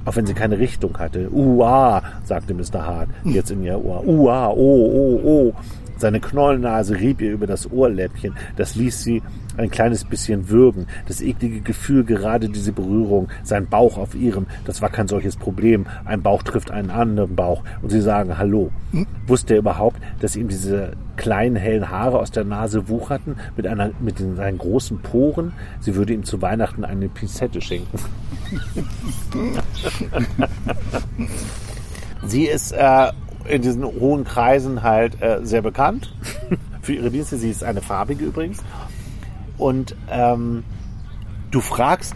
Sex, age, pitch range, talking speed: male, 40-59, 100-120 Hz, 150 wpm